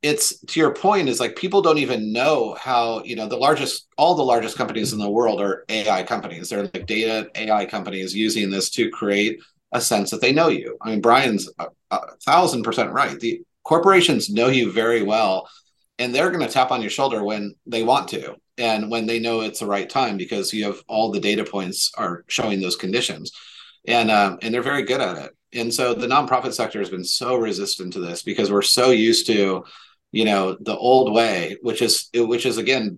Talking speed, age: 215 wpm, 30-49